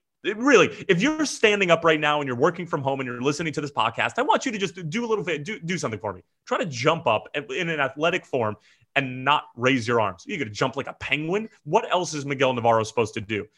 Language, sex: English, male